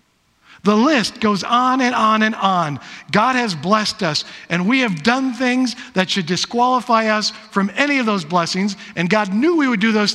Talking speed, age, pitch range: 195 wpm, 50-69, 185-245 Hz